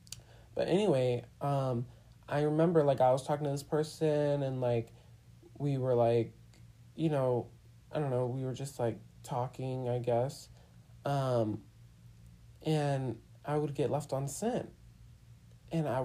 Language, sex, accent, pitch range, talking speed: English, male, American, 120-155 Hz, 145 wpm